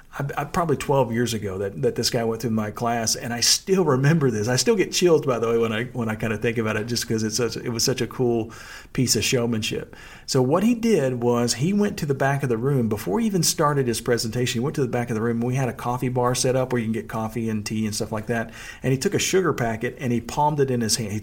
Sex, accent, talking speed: male, American, 300 wpm